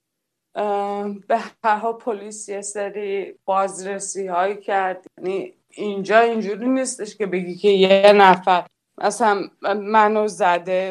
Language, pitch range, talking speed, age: Persian, 185-220 Hz, 115 wpm, 20-39